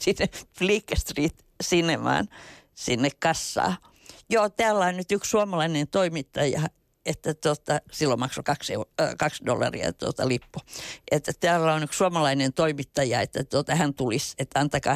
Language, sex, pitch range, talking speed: Finnish, female, 140-170 Hz, 140 wpm